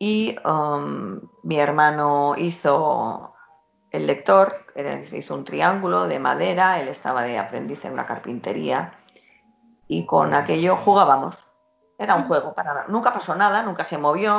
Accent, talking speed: Spanish, 140 wpm